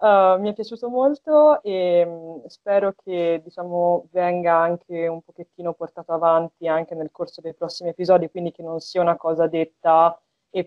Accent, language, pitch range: native, Italian, 165-190 Hz